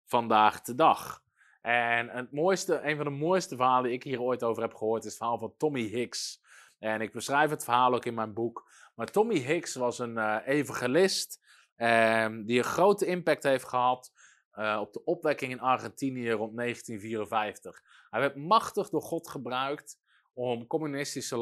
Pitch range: 115-145 Hz